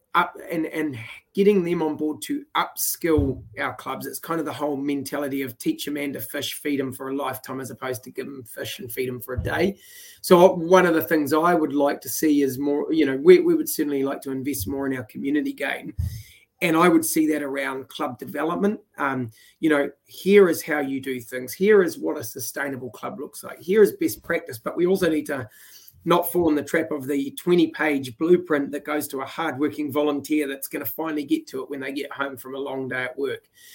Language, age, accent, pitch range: English, 30-49, Australian, 140-175 Hz